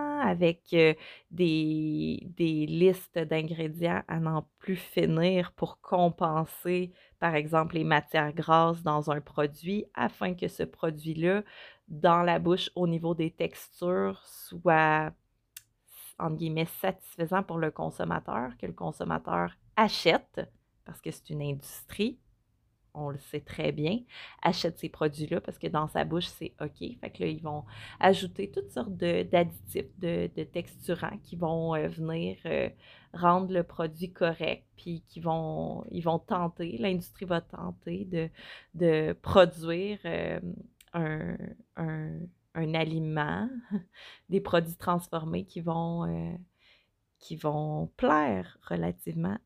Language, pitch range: French, 155-180 Hz